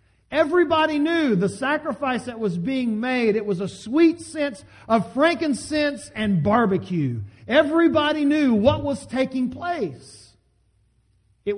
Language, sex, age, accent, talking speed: English, male, 50-69, American, 125 wpm